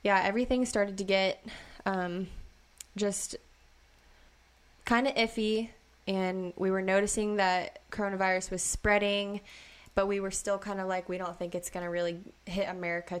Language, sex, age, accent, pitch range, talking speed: English, female, 20-39, American, 170-200 Hz, 155 wpm